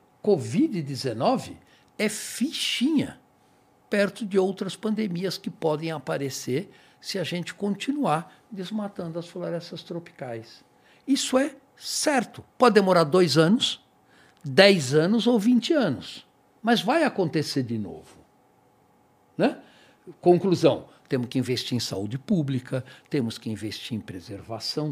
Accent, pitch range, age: Brazilian, 130-215 Hz, 60-79